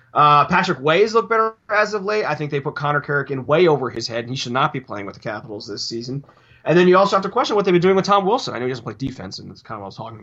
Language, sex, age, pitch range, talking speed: English, male, 20-39, 125-155 Hz, 340 wpm